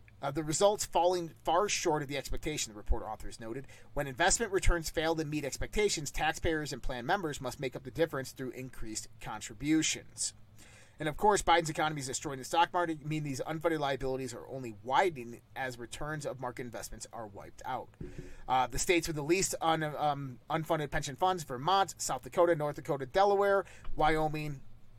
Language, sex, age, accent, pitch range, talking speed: English, male, 30-49, American, 125-170 Hz, 180 wpm